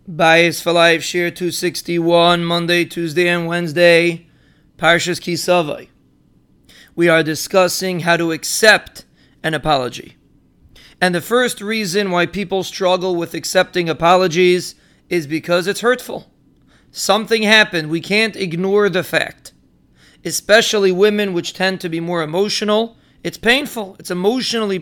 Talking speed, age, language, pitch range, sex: 125 wpm, 30-49, English, 170-210 Hz, male